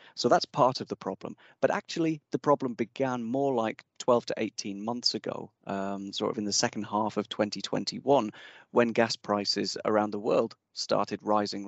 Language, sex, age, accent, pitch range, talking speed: English, male, 30-49, British, 105-125 Hz, 180 wpm